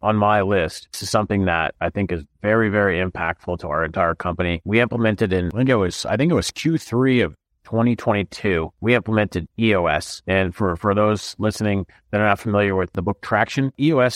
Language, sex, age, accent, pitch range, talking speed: English, male, 30-49, American, 90-110 Hz, 190 wpm